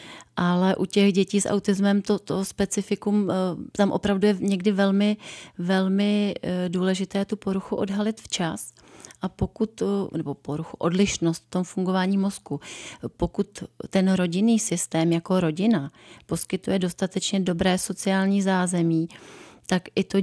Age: 30-49